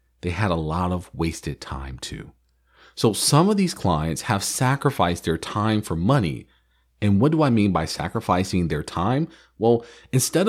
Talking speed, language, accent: 170 wpm, English, American